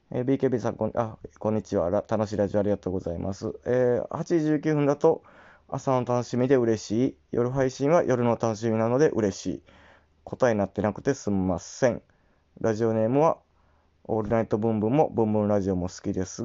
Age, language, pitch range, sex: 20-39, Japanese, 100-130 Hz, male